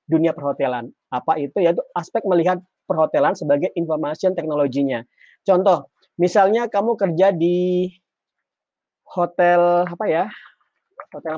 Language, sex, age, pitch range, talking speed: Indonesian, male, 30-49, 160-215 Hz, 105 wpm